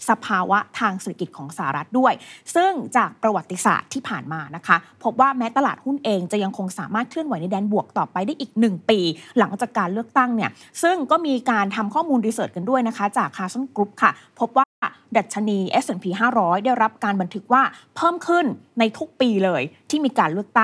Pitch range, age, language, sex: 195-260 Hz, 20-39, Thai, female